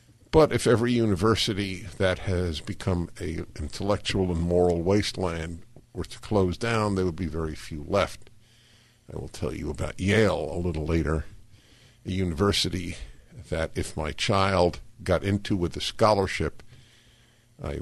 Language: English